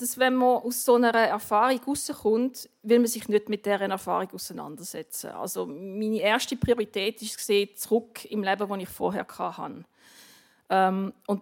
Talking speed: 150 wpm